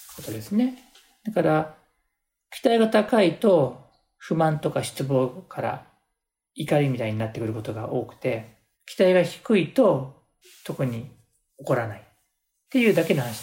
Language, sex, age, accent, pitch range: Japanese, male, 40-59, native, 135-220 Hz